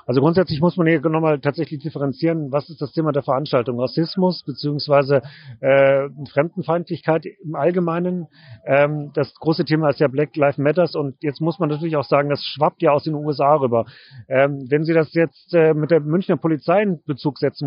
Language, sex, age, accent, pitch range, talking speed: German, male, 40-59, German, 135-160 Hz, 190 wpm